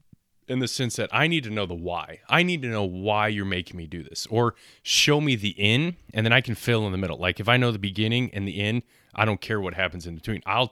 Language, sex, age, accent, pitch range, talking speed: English, male, 30-49, American, 90-110 Hz, 280 wpm